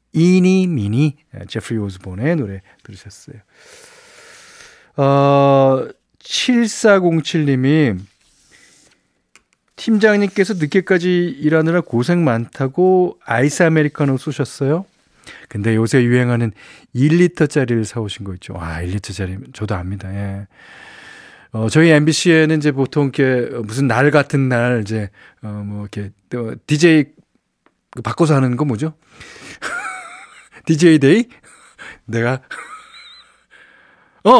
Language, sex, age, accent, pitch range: Korean, male, 40-59, native, 115-165 Hz